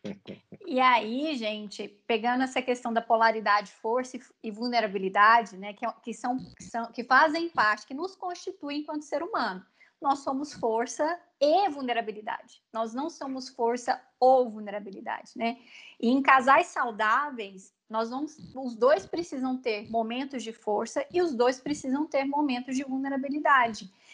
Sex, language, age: female, Portuguese, 20-39